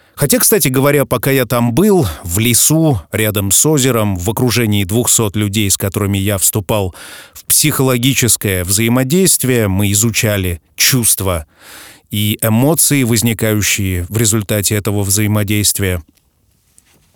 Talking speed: 115 wpm